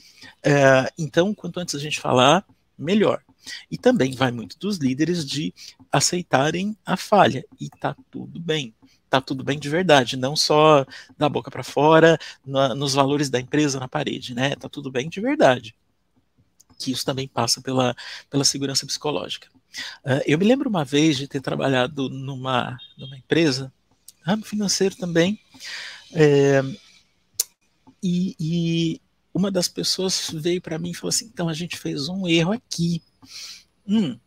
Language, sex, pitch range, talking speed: Portuguese, male, 140-195 Hz, 155 wpm